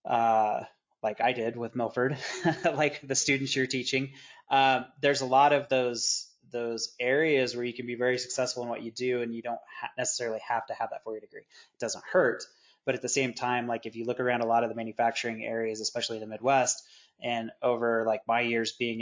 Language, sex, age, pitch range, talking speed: English, male, 20-39, 120-135 Hz, 220 wpm